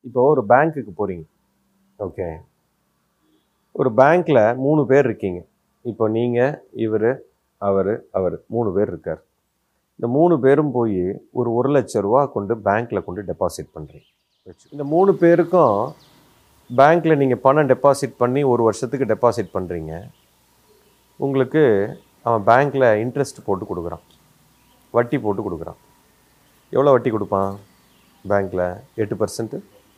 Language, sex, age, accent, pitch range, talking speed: Tamil, male, 30-49, native, 110-145 Hz, 115 wpm